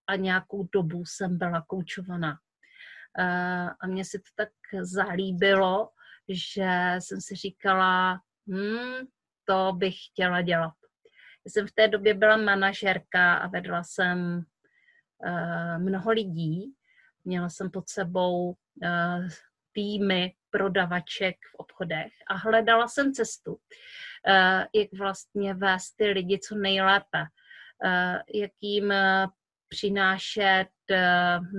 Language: Czech